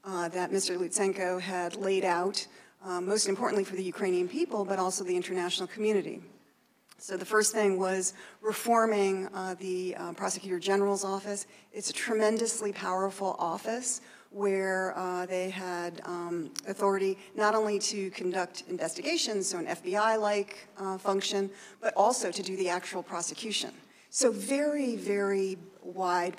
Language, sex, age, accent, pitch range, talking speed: English, female, 40-59, American, 185-210 Hz, 140 wpm